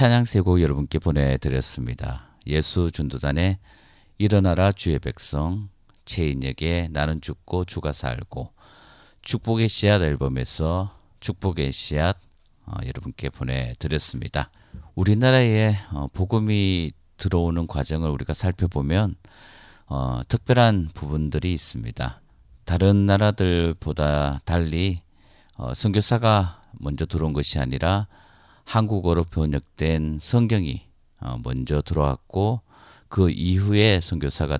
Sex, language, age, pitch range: male, Korean, 40-59, 75-100 Hz